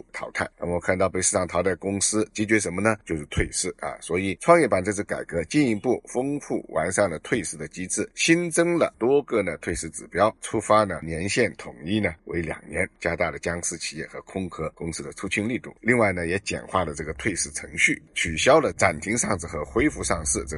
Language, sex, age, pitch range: Chinese, male, 50-69, 80-105 Hz